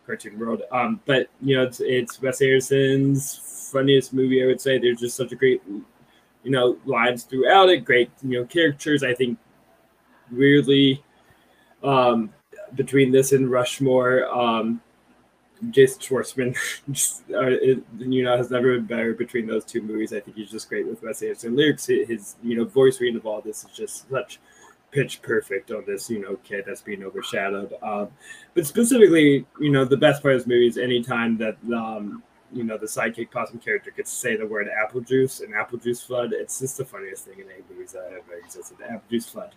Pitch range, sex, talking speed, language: 120-180 Hz, male, 195 wpm, English